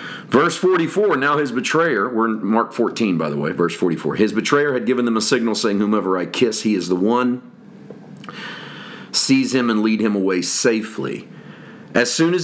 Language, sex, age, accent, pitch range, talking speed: English, male, 40-59, American, 95-120 Hz, 190 wpm